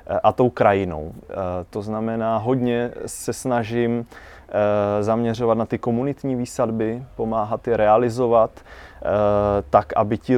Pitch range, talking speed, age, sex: 100-115 Hz, 110 wpm, 20-39, male